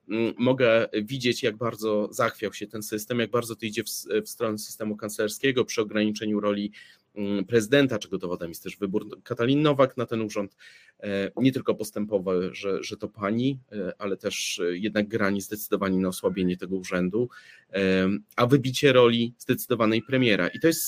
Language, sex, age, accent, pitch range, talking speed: Polish, male, 30-49, native, 95-120 Hz, 160 wpm